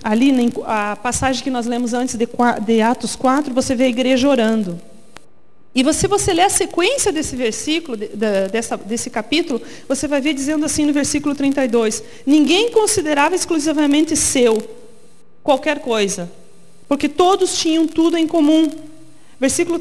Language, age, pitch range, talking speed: Portuguese, 40-59, 260-330 Hz, 140 wpm